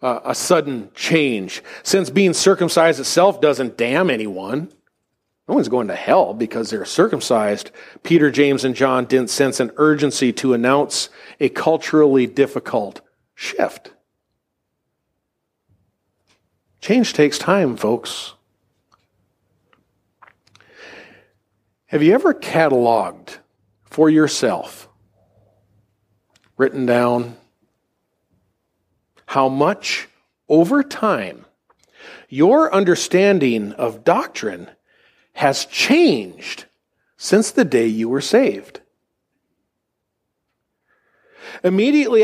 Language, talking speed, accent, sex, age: English, 85 wpm, American, male, 50-69